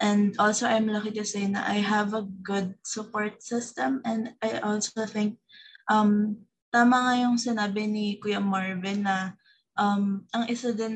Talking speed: 150 wpm